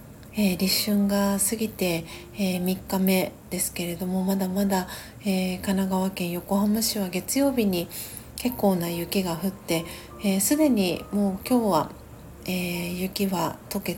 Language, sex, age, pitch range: Japanese, female, 40-59, 180-205 Hz